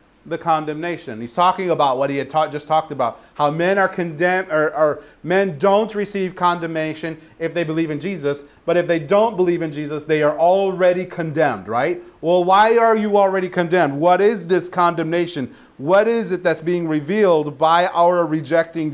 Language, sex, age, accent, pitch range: Japanese, male, 40-59, American, 145-185 Hz